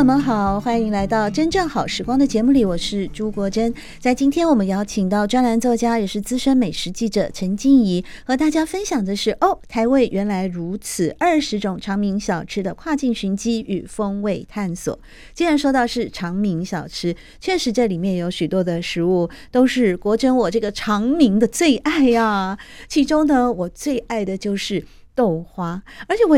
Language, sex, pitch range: Chinese, female, 190-250 Hz